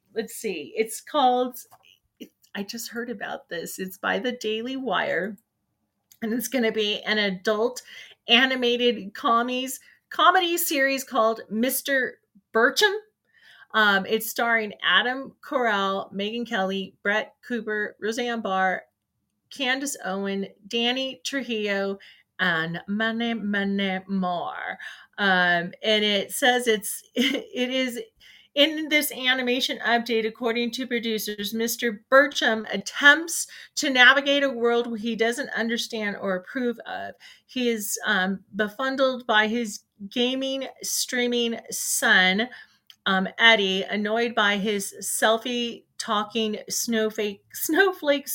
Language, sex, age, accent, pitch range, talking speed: English, female, 30-49, American, 205-250 Hz, 115 wpm